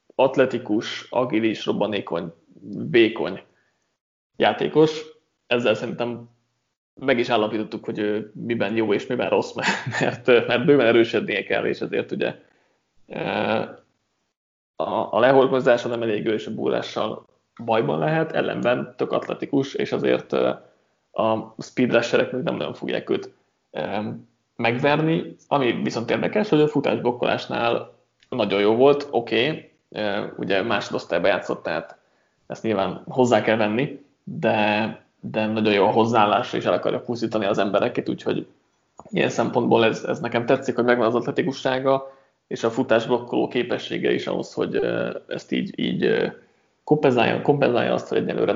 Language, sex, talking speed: Hungarian, male, 130 wpm